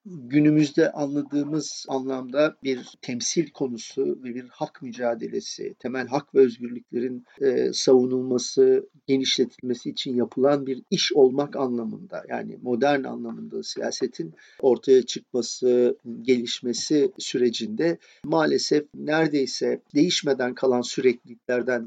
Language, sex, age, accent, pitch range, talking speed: English, male, 50-69, Turkish, 125-175 Hz, 100 wpm